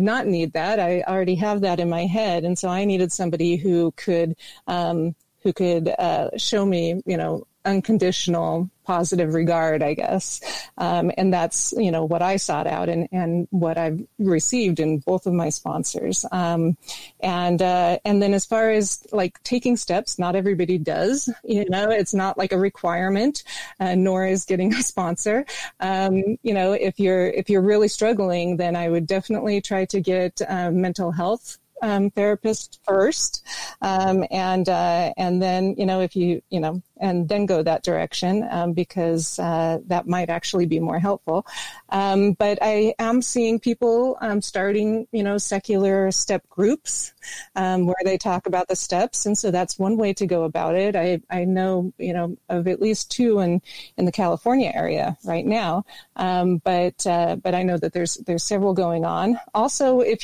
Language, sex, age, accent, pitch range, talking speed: English, female, 40-59, American, 175-210 Hz, 180 wpm